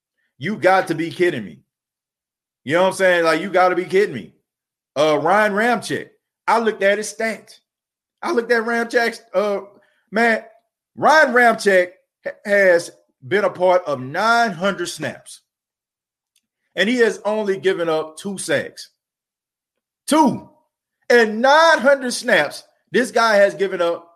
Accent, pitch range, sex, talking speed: American, 180-250 Hz, male, 145 wpm